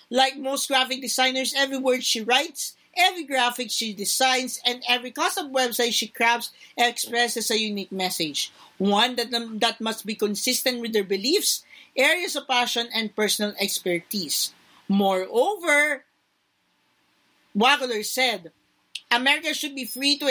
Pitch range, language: 220-260 Hz, Filipino